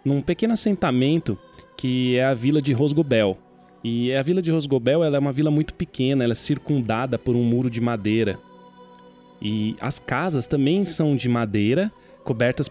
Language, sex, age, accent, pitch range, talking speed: Portuguese, male, 20-39, Brazilian, 120-170 Hz, 170 wpm